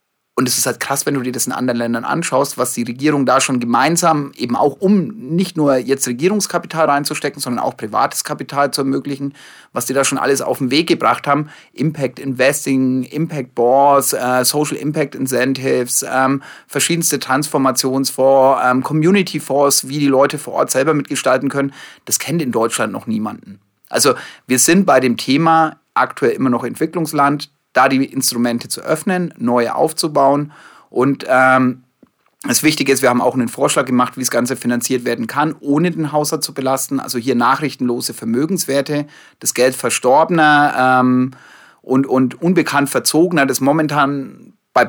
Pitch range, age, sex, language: 125-150 Hz, 30-49, male, German